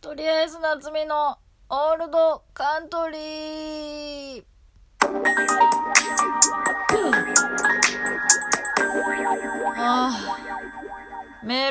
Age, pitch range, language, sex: 20-39, 160-225 Hz, Japanese, female